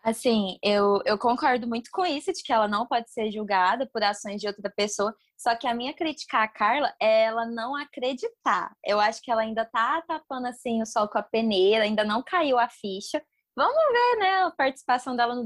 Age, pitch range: 20-39, 225-290 Hz